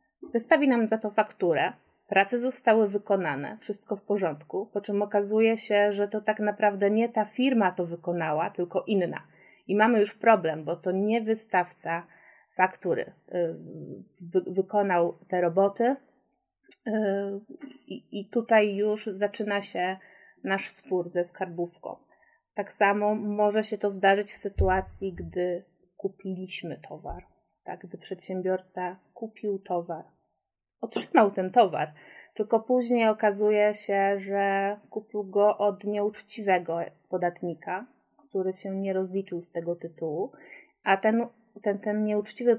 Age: 30-49